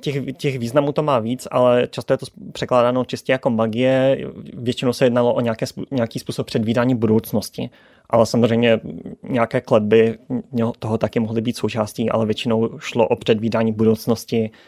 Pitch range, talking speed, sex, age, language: 115-130 Hz, 150 wpm, male, 20-39, Czech